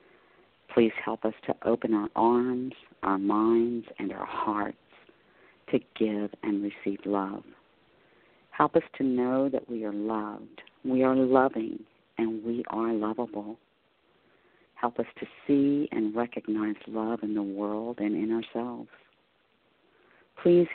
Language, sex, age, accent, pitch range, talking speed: English, female, 50-69, American, 105-120 Hz, 135 wpm